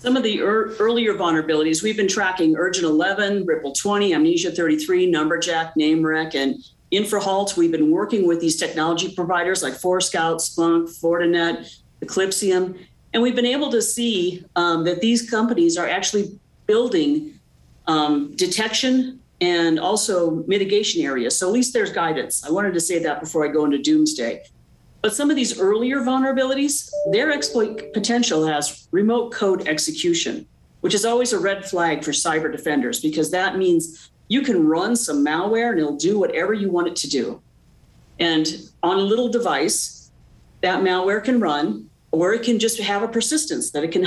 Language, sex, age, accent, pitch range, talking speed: English, female, 50-69, American, 160-235 Hz, 165 wpm